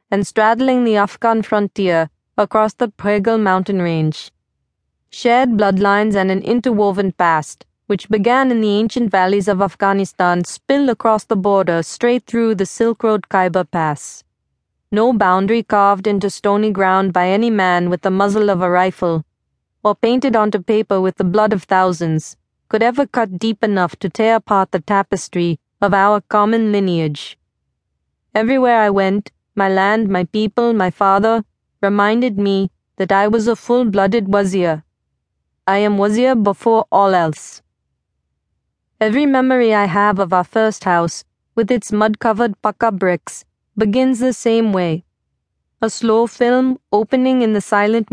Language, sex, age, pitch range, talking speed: English, female, 30-49, 190-225 Hz, 150 wpm